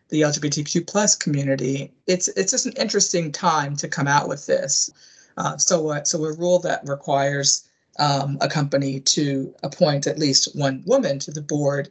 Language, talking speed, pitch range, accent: English, 180 wpm, 140-175 Hz, American